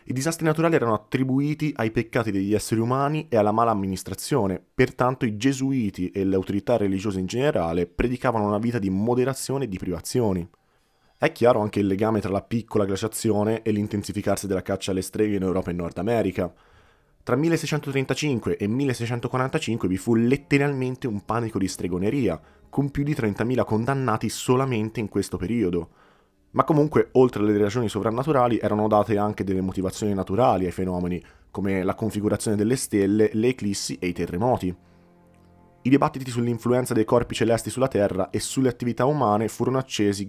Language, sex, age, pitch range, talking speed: Italian, male, 20-39, 95-125 Hz, 160 wpm